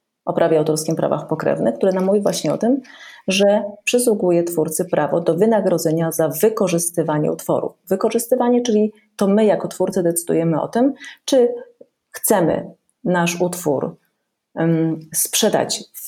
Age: 30-49